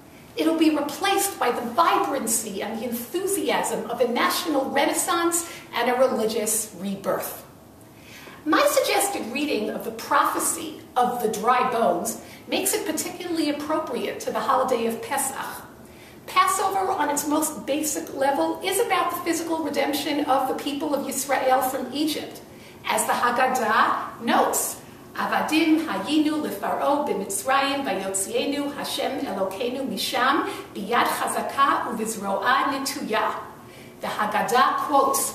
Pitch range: 240-310 Hz